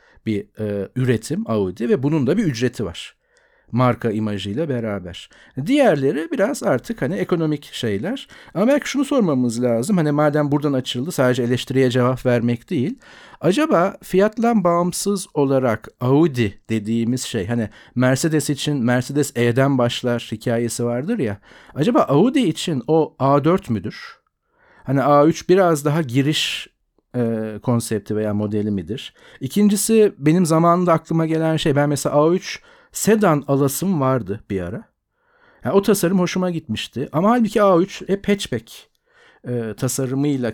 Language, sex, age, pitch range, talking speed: Turkish, male, 50-69, 120-170 Hz, 135 wpm